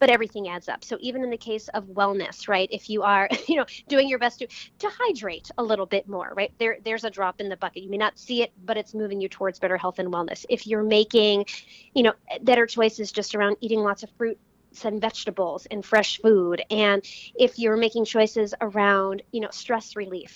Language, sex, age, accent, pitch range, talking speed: English, female, 20-39, American, 205-245 Hz, 225 wpm